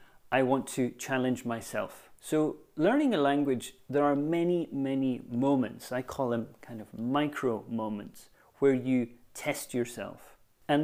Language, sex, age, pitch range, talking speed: English, male, 30-49, 120-145 Hz, 145 wpm